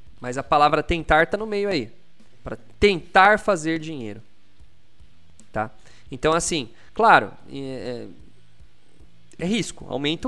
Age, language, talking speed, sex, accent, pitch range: 20-39, Portuguese, 110 wpm, male, Brazilian, 130-175 Hz